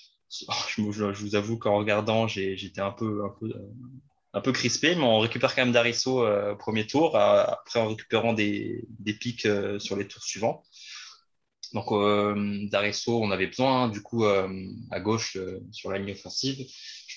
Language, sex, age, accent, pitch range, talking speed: French, male, 20-39, French, 100-115 Hz, 190 wpm